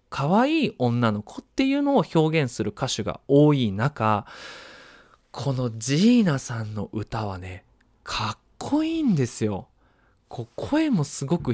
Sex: male